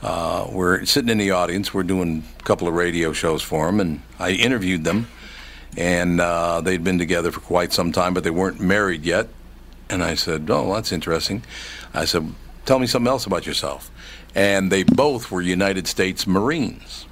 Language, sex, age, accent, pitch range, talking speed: English, male, 60-79, American, 85-105 Hz, 190 wpm